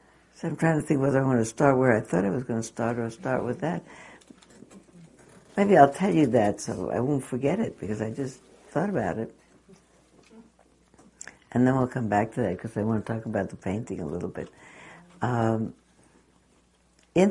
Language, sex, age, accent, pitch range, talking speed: English, female, 60-79, American, 105-140 Hz, 200 wpm